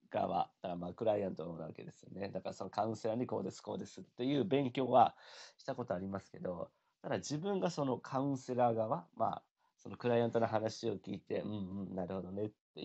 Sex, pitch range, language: male, 110-140 Hz, Japanese